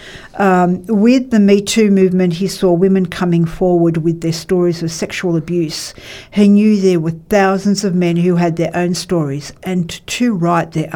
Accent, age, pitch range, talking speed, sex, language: Australian, 50-69, 170-200 Hz, 180 wpm, female, English